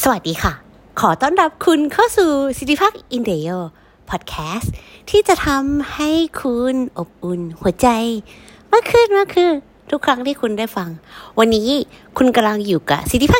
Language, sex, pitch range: Thai, female, 160-240 Hz